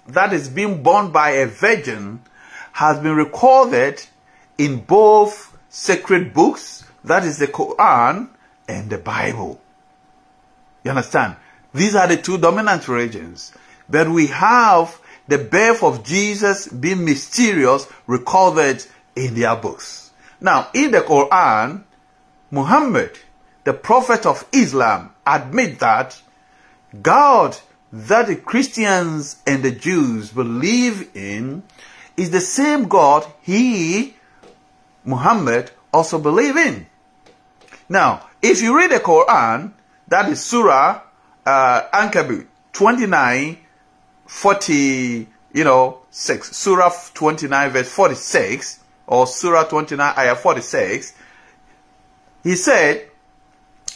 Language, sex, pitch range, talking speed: English, male, 135-200 Hz, 115 wpm